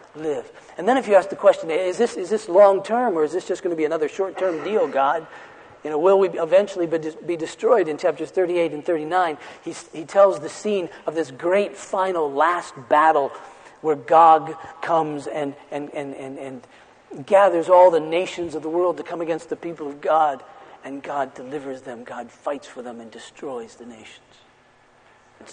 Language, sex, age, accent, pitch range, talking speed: English, male, 40-59, American, 140-185 Hz, 195 wpm